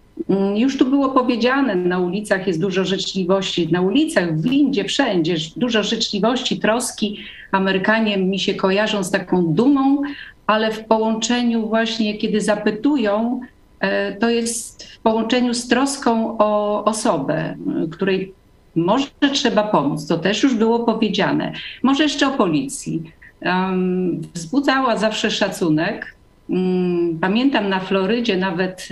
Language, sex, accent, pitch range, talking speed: Polish, female, native, 185-225 Hz, 120 wpm